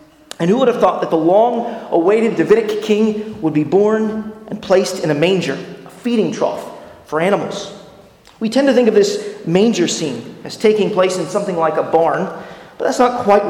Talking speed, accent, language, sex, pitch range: 190 wpm, American, English, male, 170-225 Hz